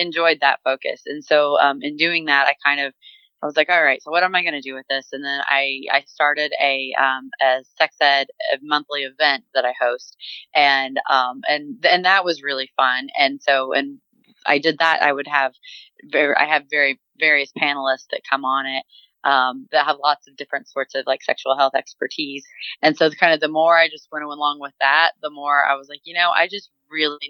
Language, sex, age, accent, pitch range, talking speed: English, female, 20-39, American, 135-160 Hz, 225 wpm